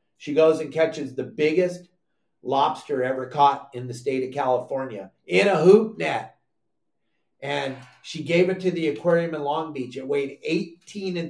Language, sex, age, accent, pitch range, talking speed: English, male, 50-69, American, 140-185 Hz, 170 wpm